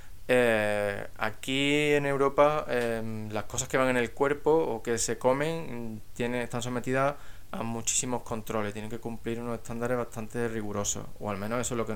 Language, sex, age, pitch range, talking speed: Spanish, male, 20-39, 105-125 Hz, 180 wpm